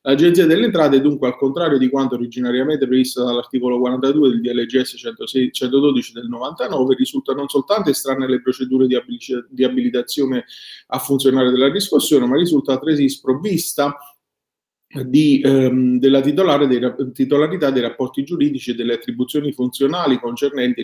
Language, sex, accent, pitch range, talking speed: Italian, male, native, 125-150 Hz, 145 wpm